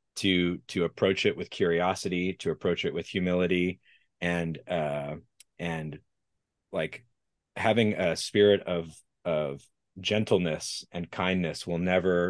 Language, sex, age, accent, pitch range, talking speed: English, male, 30-49, American, 80-95 Hz, 120 wpm